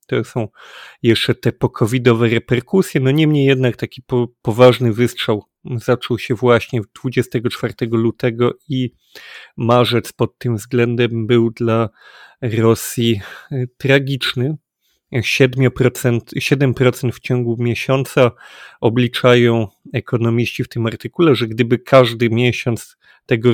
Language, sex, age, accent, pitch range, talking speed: Polish, male, 30-49, native, 115-130 Hz, 100 wpm